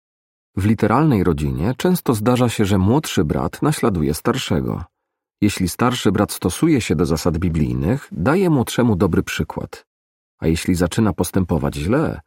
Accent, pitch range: native, 80-120 Hz